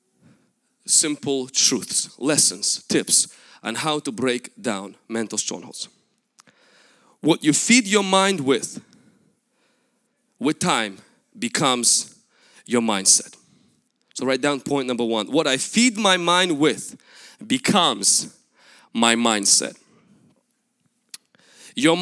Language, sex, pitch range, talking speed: English, male, 155-245 Hz, 105 wpm